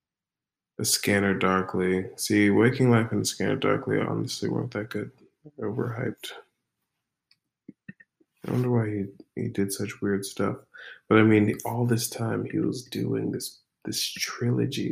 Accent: American